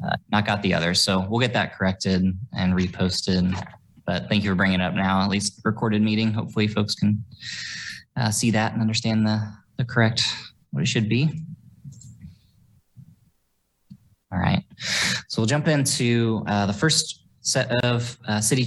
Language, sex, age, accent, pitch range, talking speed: English, male, 20-39, American, 100-120 Hz, 165 wpm